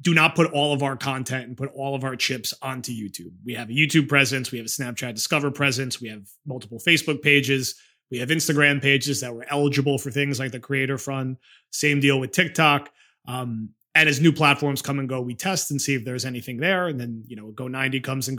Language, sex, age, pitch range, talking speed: English, male, 30-49, 125-145 Hz, 230 wpm